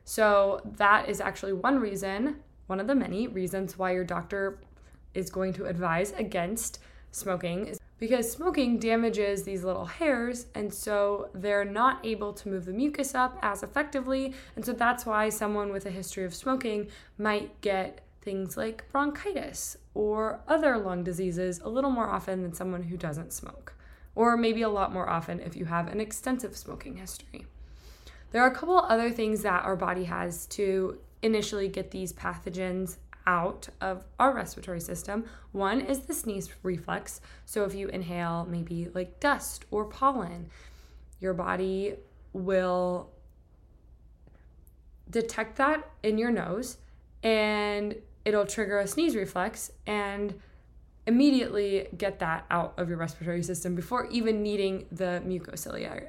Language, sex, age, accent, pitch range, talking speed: English, female, 20-39, American, 180-225 Hz, 150 wpm